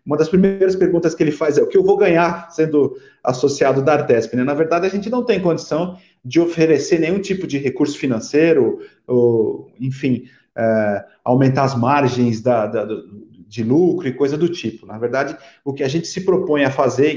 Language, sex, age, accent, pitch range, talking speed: Portuguese, male, 40-59, Brazilian, 135-185 Hz, 180 wpm